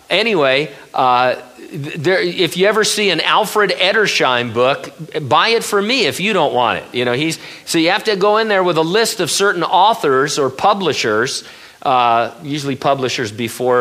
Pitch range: 130-185 Hz